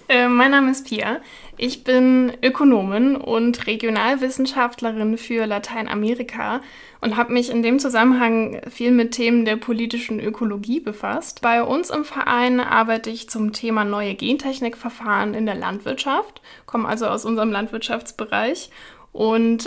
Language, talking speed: German, 130 wpm